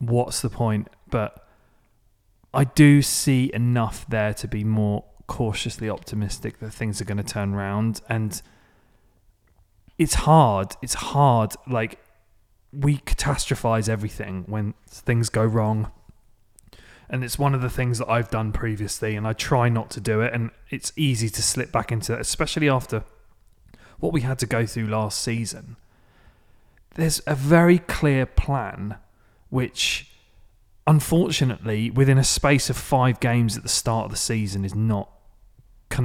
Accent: British